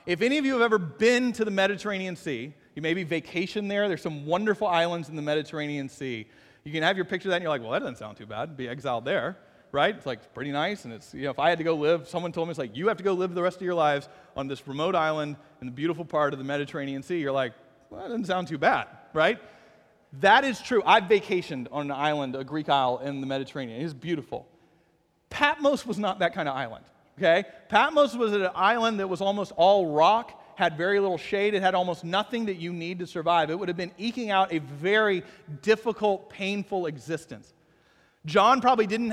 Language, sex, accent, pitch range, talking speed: English, male, American, 155-205 Hz, 240 wpm